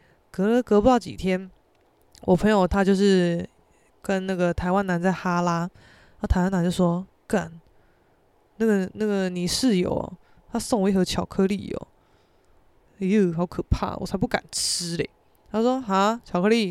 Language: Chinese